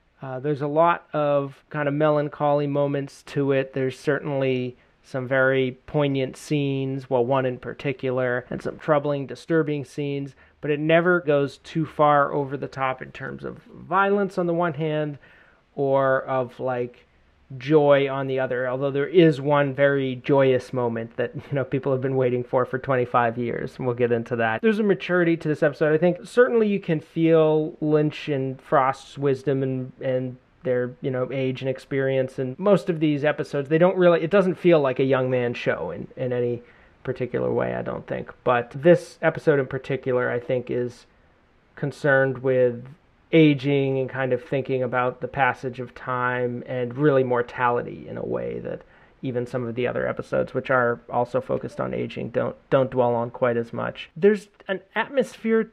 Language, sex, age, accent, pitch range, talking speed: English, male, 30-49, American, 130-155 Hz, 185 wpm